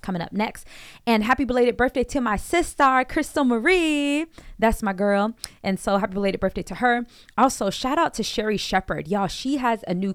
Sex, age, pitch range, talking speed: female, 20-39, 175-215 Hz, 195 wpm